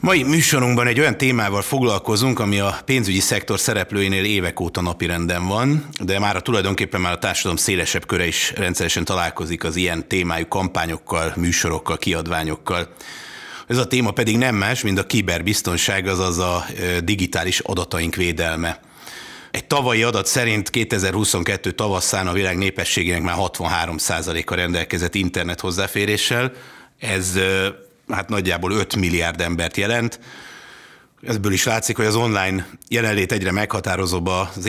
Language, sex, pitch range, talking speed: Hungarian, male, 90-110 Hz, 135 wpm